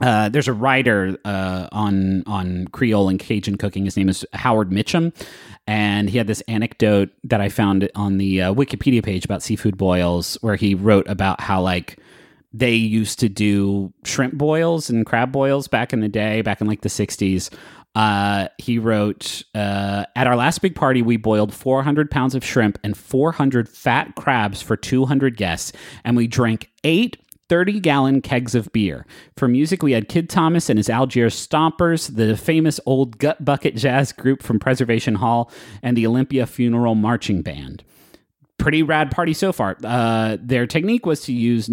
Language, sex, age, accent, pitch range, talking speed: English, male, 30-49, American, 105-140 Hz, 175 wpm